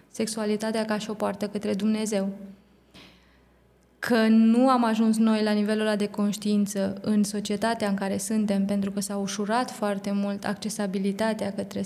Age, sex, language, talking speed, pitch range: 20-39, female, Romanian, 150 wpm, 200-220 Hz